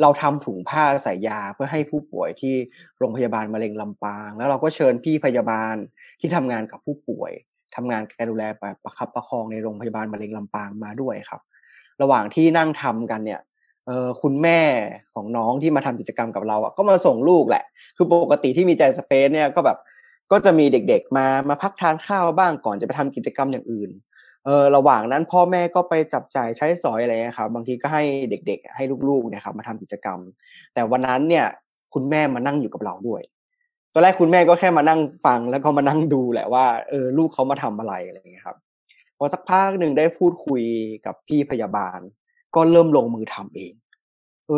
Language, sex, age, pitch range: Thai, male, 20-39, 120-160 Hz